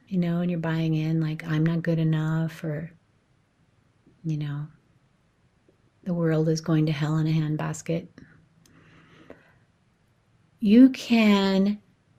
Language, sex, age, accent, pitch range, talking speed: English, female, 30-49, American, 160-210 Hz, 125 wpm